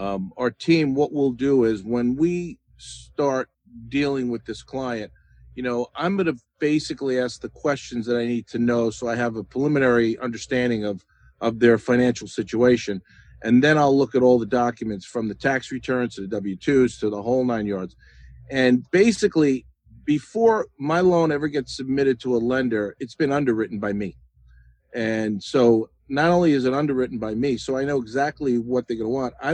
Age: 50-69